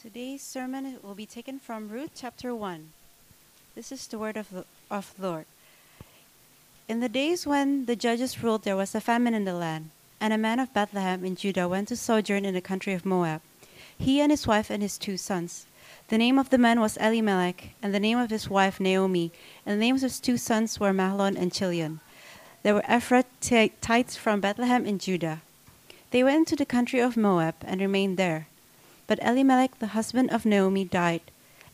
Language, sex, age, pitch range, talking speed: English, female, 30-49, 190-240 Hz, 195 wpm